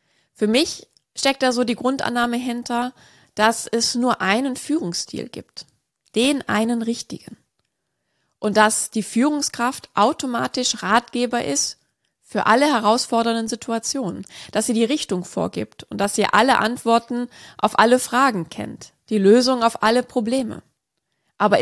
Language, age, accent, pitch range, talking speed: German, 20-39, German, 215-250 Hz, 135 wpm